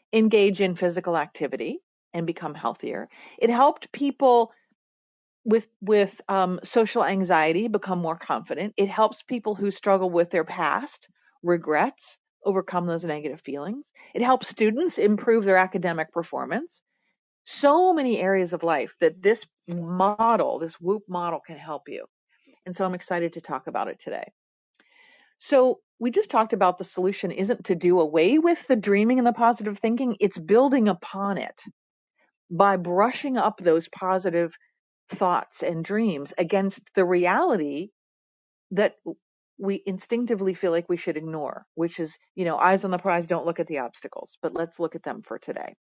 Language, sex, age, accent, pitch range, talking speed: English, female, 40-59, American, 170-230 Hz, 160 wpm